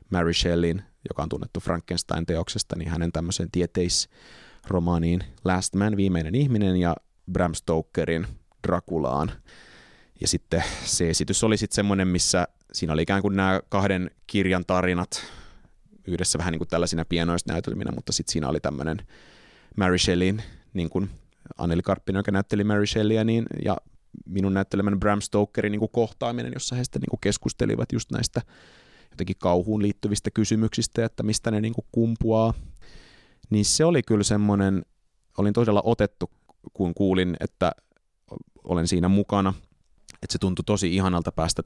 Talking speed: 145 wpm